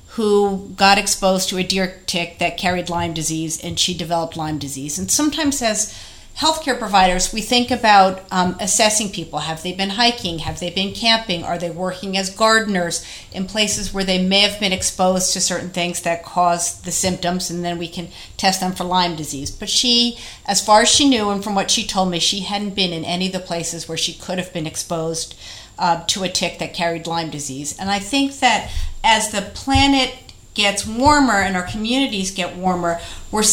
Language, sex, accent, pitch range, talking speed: English, female, American, 175-210 Hz, 205 wpm